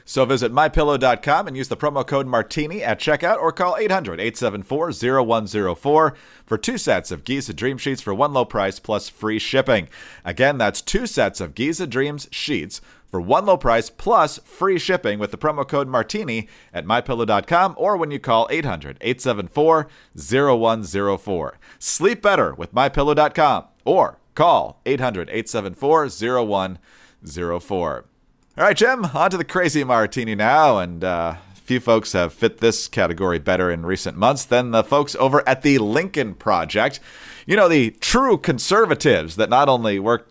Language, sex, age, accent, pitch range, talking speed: English, male, 40-59, American, 105-145 Hz, 150 wpm